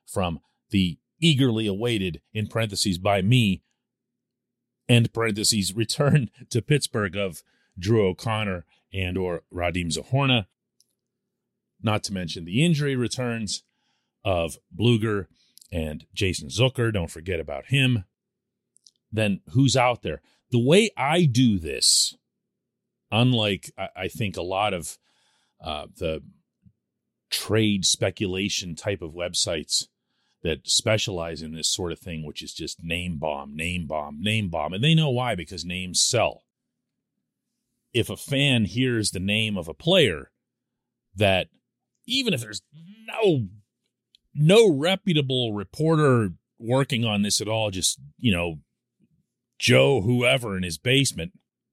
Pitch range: 95-125 Hz